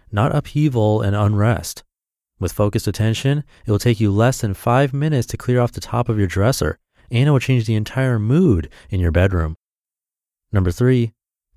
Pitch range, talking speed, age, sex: 95-130 Hz, 180 wpm, 30-49, male